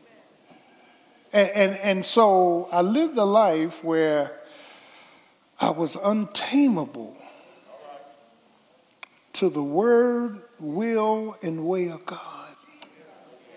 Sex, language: male, English